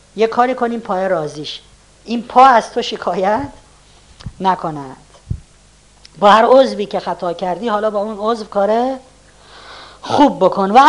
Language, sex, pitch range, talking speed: Persian, female, 180-250 Hz, 140 wpm